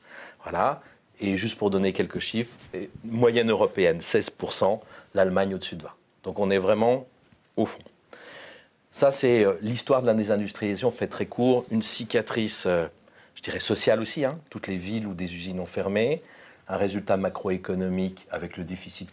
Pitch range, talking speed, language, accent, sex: 95-120 Hz, 155 wpm, French, French, male